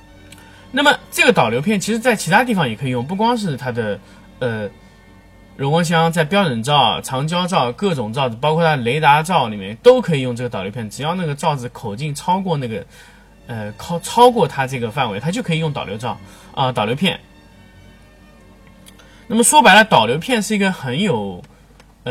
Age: 20-39